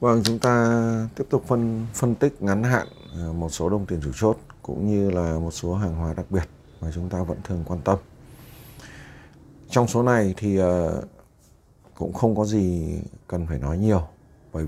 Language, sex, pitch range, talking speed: Vietnamese, male, 85-110 Hz, 190 wpm